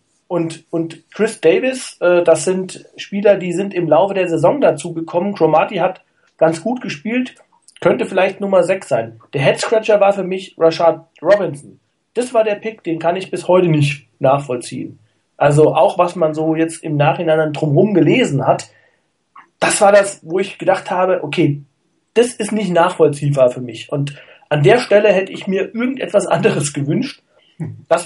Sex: male